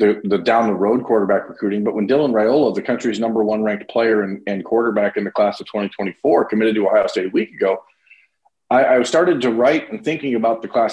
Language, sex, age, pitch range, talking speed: English, male, 40-59, 110-150 Hz, 225 wpm